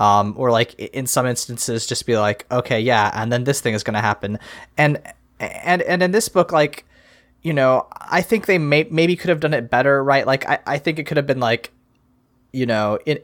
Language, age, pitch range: English, 20-39, 120-150 Hz